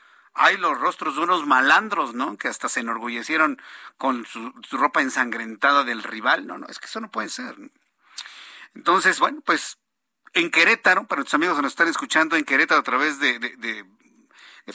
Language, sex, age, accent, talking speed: Spanish, male, 50-69, Mexican, 190 wpm